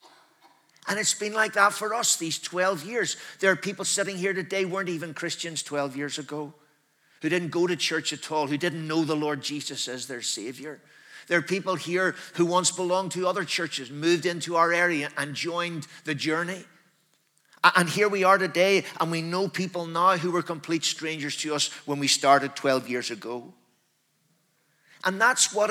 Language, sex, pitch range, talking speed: English, male, 140-175 Hz, 190 wpm